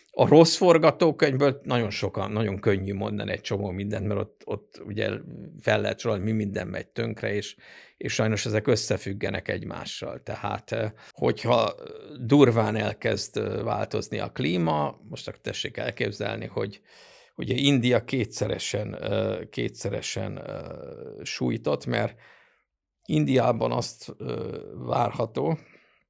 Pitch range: 105-130 Hz